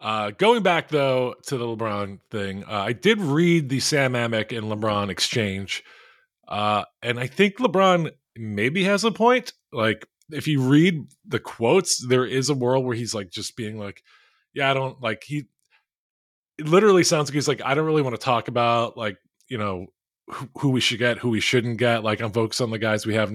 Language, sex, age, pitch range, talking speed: English, male, 20-39, 110-145 Hz, 210 wpm